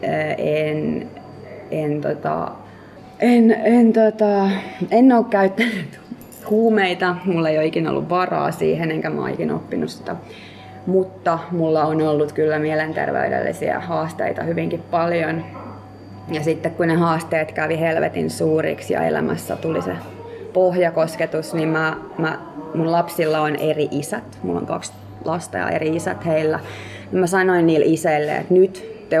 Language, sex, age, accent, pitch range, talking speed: Finnish, female, 20-39, native, 150-180 Hz, 135 wpm